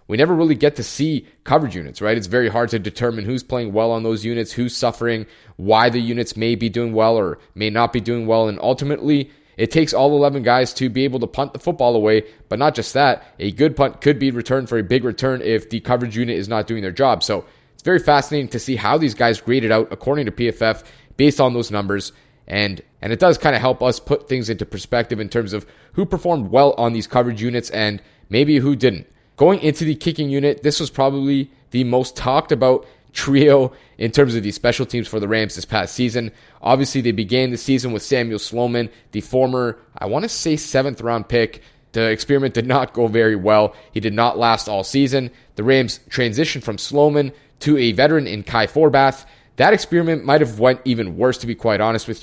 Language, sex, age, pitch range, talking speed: English, male, 30-49, 115-140 Hz, 225 wpm